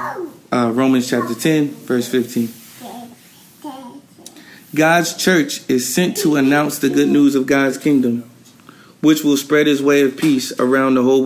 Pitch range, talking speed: 120-160 Hz, 150 wpm